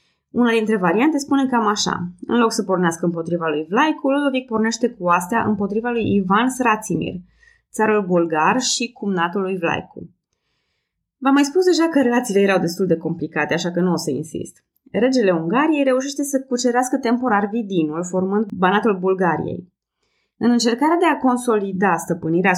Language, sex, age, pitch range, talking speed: Romanian, female, 20-39, 185-255 Hz, 155 wpm